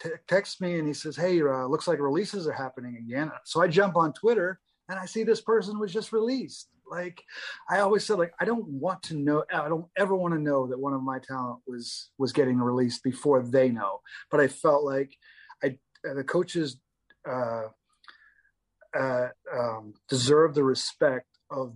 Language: English